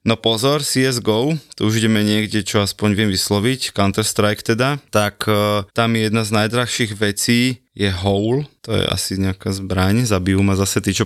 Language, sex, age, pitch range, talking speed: Slovak, male, 20-39, 100-120 Hz, 175 wpm